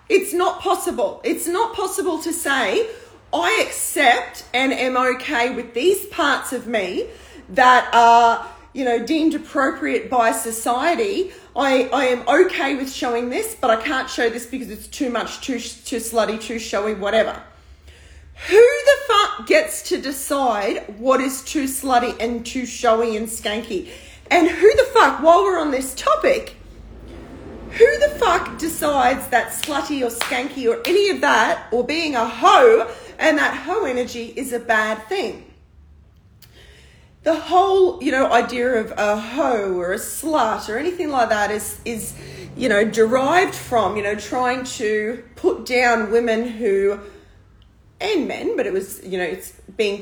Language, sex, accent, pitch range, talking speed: English, female, Australian, 220-320 Hz, 160 wpm